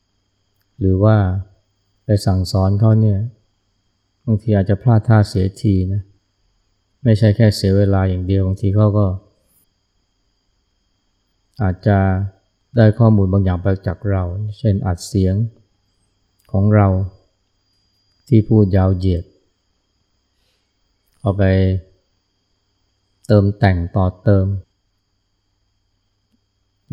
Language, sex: Thai, male